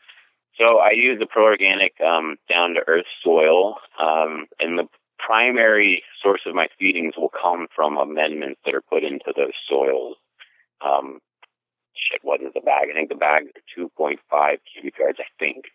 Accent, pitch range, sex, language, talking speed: American, 65-110 Hz, male, English, 170 wpm